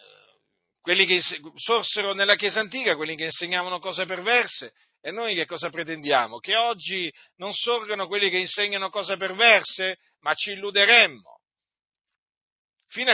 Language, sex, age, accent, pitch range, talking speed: Italian, male, 50-69, native, 170-230 Hz, 135 wpm